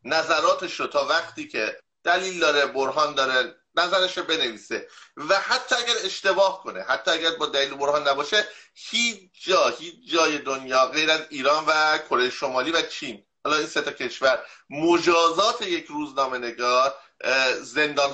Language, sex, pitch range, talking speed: English, male, 135-185 Hz, 140 wpm